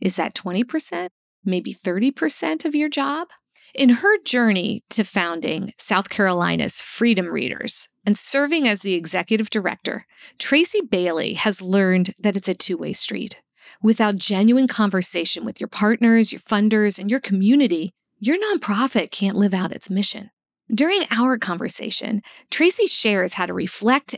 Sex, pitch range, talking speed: female, 200-260 Hz, 145 wpm